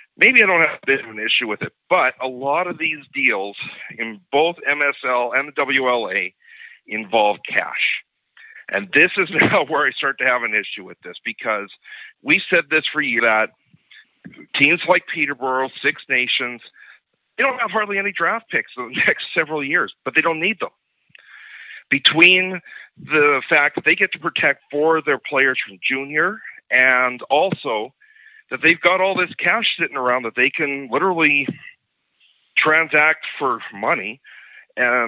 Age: 50-69